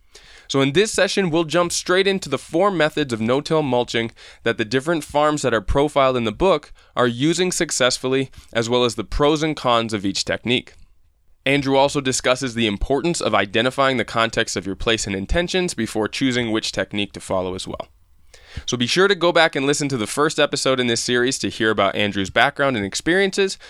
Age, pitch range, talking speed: 20-39, 120-170 Hz, 205 wpm